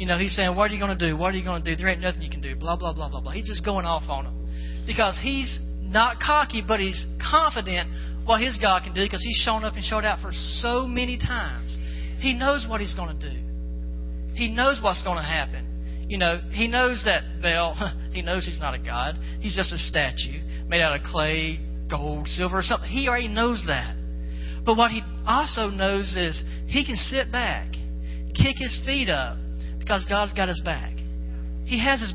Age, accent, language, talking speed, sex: 40-59, American, English, 220 wpm, male